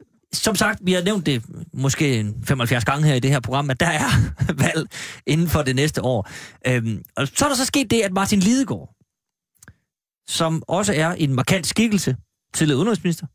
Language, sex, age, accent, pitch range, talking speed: Danish, male, 30-49, native, 135-190 Hz, 195 wpm